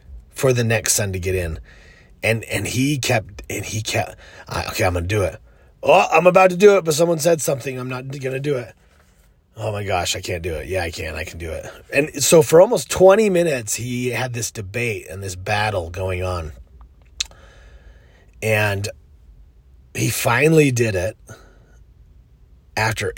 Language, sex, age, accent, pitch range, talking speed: English, male, 30-49, American, 80-125 Hz, 185 wpm